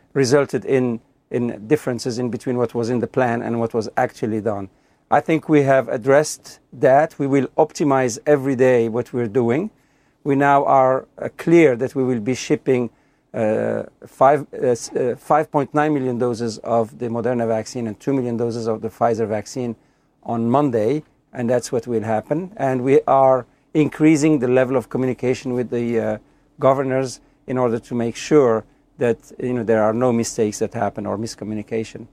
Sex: male